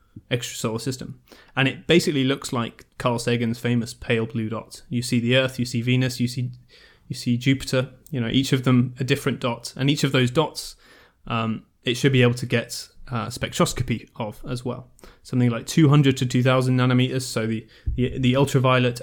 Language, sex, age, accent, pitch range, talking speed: English, male, 20-39, British, 120-135 Hz, 195 wpm